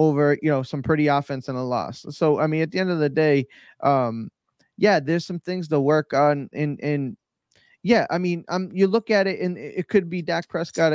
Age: 20-39